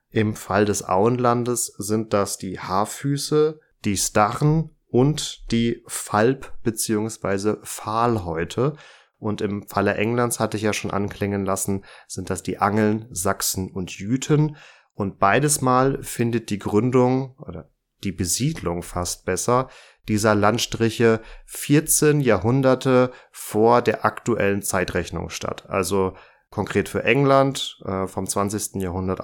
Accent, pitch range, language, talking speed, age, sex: German, 95-120 Hz, German, 120 wpm, 30-49, male